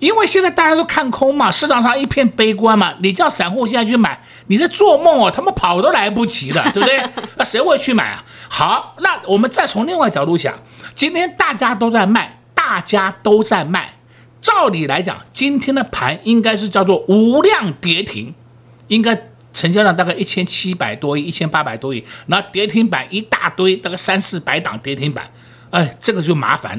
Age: 50-69